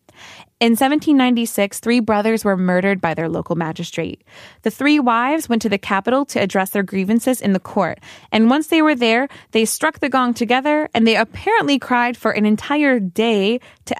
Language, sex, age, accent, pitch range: Korean, female, 20-39, American, 185-255 Hz